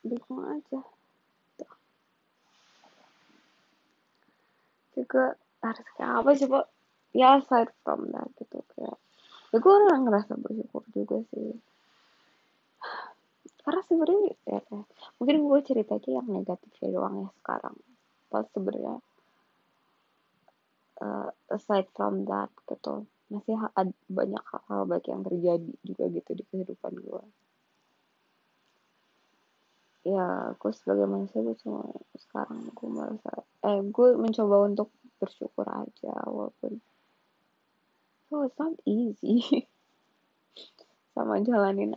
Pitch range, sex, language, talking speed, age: 190-280 Hz, female, Indonesian, 105 wpm, 20-39